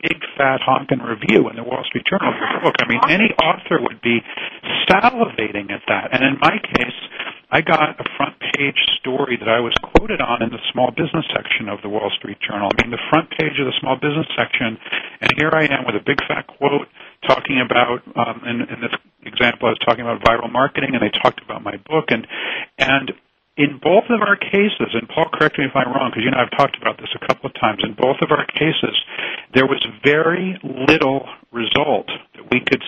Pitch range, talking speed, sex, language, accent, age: 115-150 Hz, 225 wpm, male, English, American, 50-69